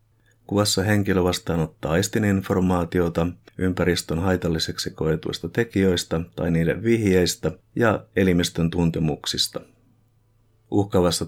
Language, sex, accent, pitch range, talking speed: Finnish, male, native, 85-110 Hz, 85 wpm